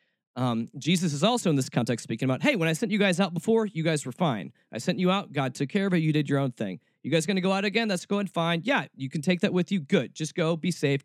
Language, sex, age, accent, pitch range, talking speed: English, male, 40-59, American, 140-200 Hz, 305 wpm